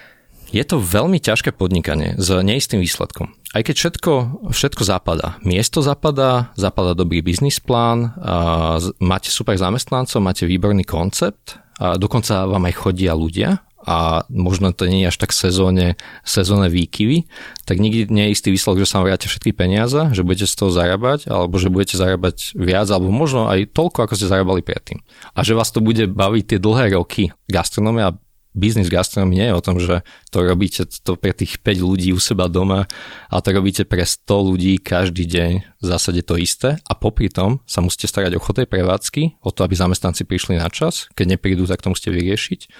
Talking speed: 180 wpm